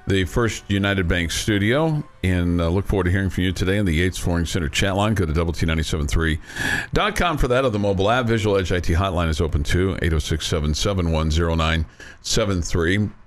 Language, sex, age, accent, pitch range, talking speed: English, male, 50-69, American, 95-115 Hz, 180 wpm